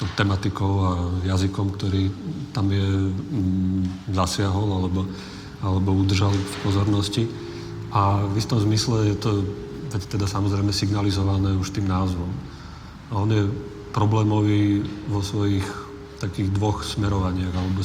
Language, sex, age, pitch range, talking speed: Slovak, male, 40-59, 95-110 Hz, 115 wpm